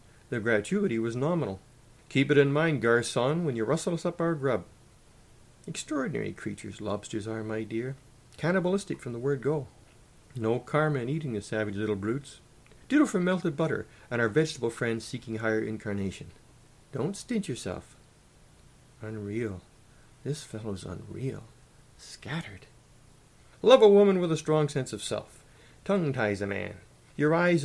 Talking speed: 150 wpm